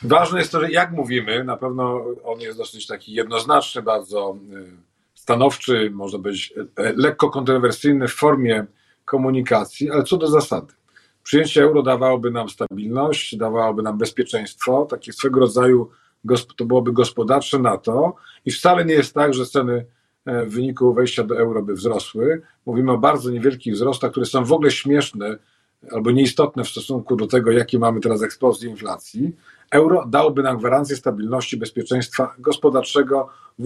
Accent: native